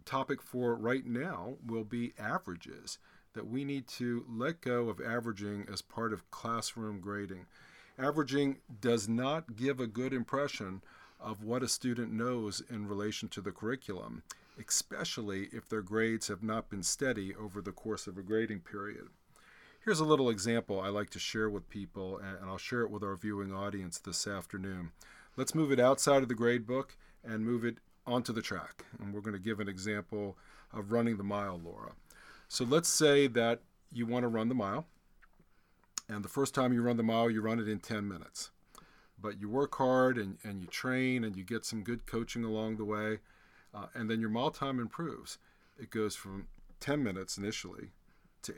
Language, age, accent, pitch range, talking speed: English, 40-59, American, 100-120 Hz, 190 wpm